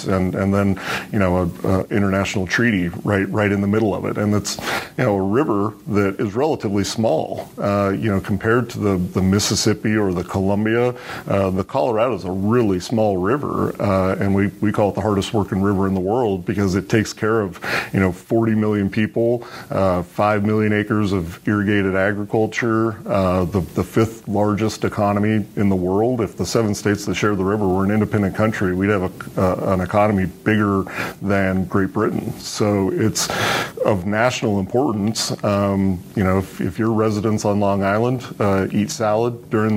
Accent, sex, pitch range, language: American, male, 95-110 Hz, English